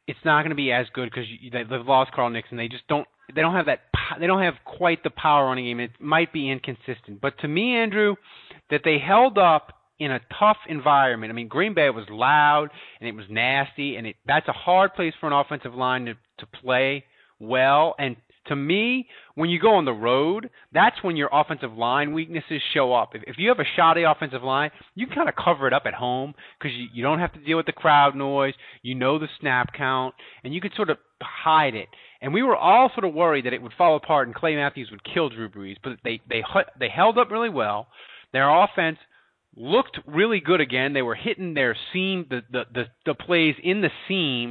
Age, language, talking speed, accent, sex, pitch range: 30-49, English, 235 wpm, American, male, 125-175 Hz